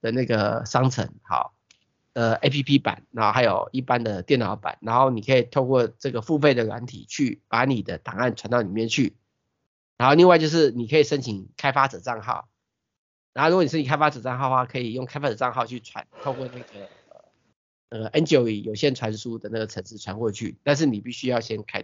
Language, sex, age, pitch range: Chinese, male, 30-49, 115-145 Hz